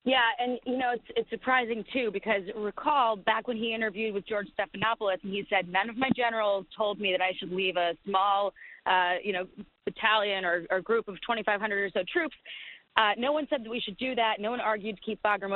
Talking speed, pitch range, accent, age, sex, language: 230 wpm, 195-245 Hz, American, 30-49, female, English